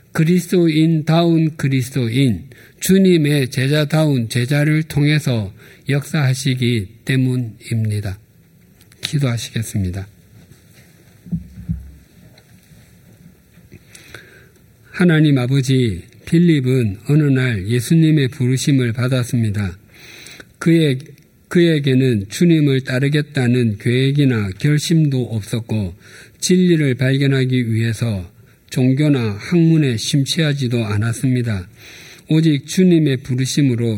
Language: Korean